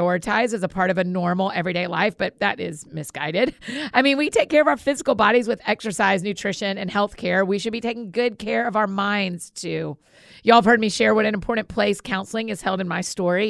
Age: 40-59